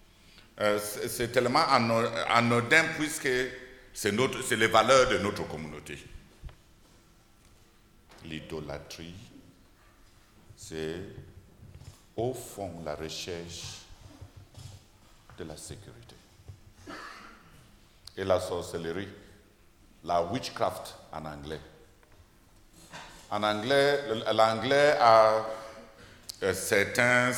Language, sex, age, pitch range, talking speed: English, male, 60-79, 90-120 Hz, 70 wpm